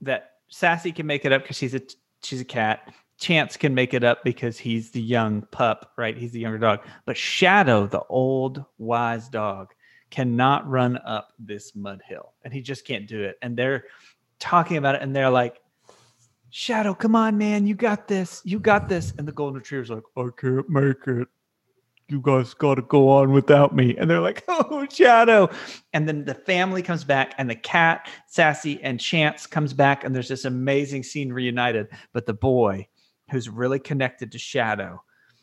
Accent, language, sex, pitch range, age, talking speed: American, English, male, 120-155 Hz, 30-49, 190 wpm